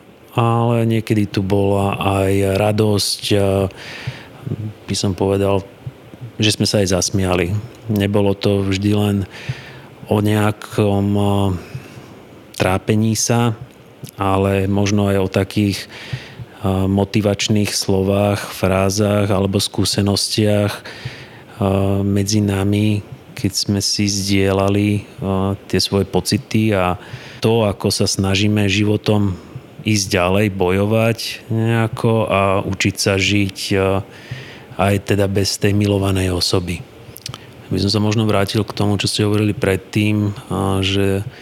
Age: 30-49